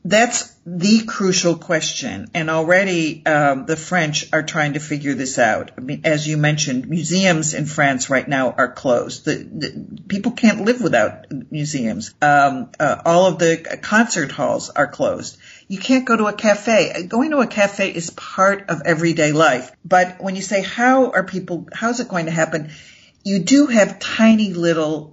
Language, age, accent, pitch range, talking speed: English, 50-69, American, 150-195 Hz, 180 wpm